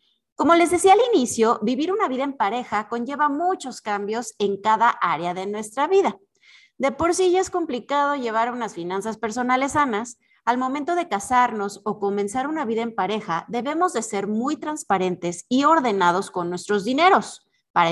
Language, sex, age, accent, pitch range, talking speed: Spanish, female, 30-49, Mexican, 205-290 Hz, 170 wpm